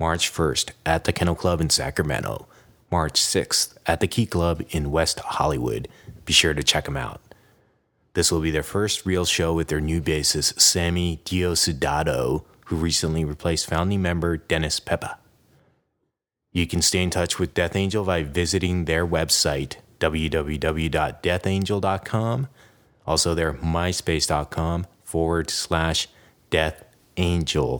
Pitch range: 80-90 Hz